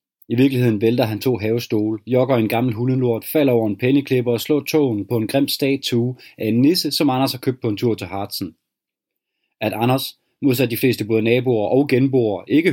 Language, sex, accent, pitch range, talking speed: Danish, male, native, 115-140 Hz, 205 wpm